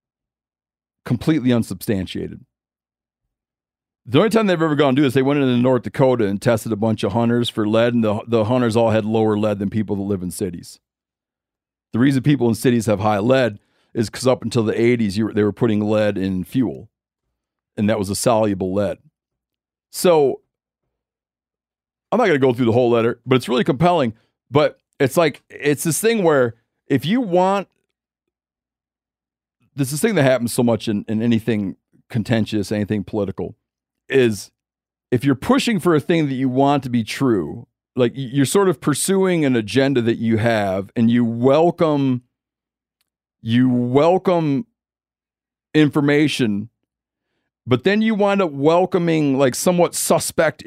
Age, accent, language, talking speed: 40-59, American, English, 165 wpm